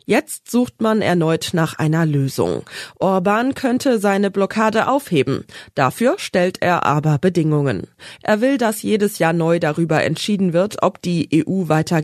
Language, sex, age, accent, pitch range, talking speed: German, female, 20-39, German, 155-200 Hz, 150 wpm